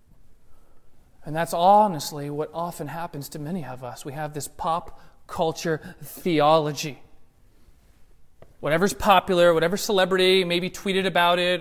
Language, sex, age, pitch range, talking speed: English, male, 30-49, 160-230 Hz, 125 wpm